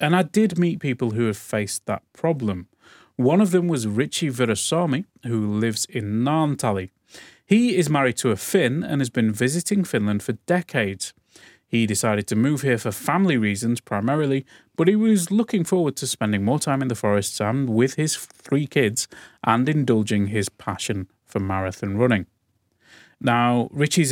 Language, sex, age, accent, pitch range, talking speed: Finnish, male, 30-49, British, 110-150 Hz, 170 wpm